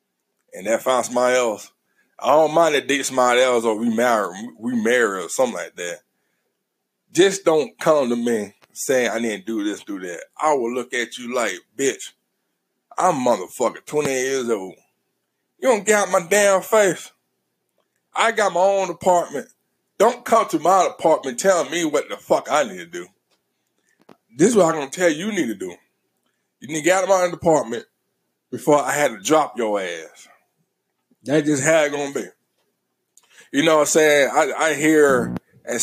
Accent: American